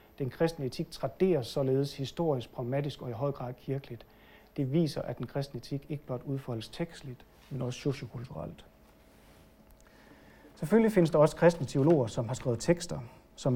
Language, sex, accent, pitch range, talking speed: Danish, male, native, 125-155 Hz, 160 wpm